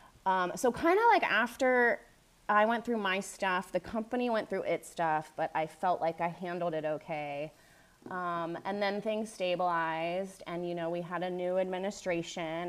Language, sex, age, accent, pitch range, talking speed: English, female, 30-49, American, 165-200 Hz, 180 wpm